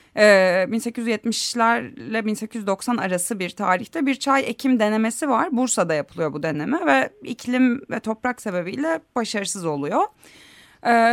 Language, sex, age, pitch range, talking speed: Turkish, female, 30-49, 180-255 Hz, 125 wpm